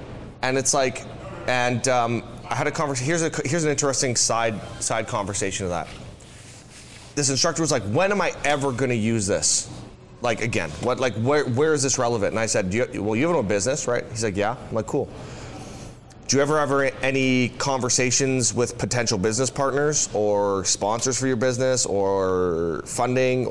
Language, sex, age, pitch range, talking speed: English, male, 30-49, 110-140 Hz, 190 wpm